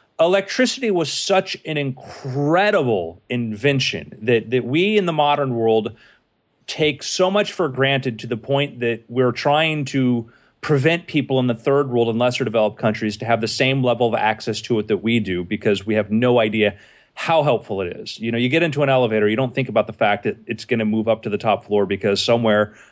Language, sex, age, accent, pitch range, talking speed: English, male, 30-49, American, 120-155 Hz, 210 wpm